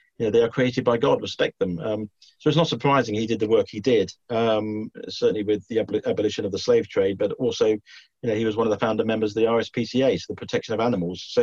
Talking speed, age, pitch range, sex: 260 wpm, 40-59, 105-130 Hz, male